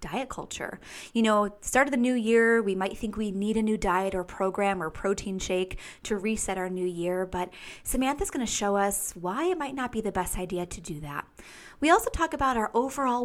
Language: English